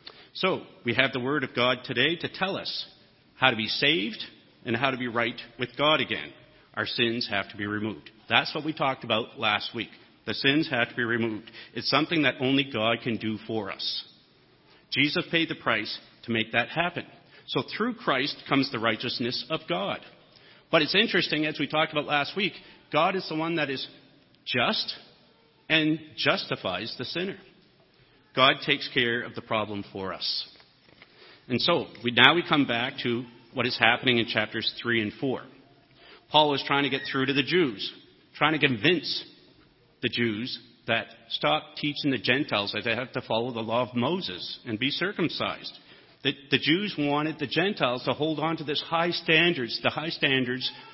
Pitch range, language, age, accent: 115-150 Hz, English, 50-69, American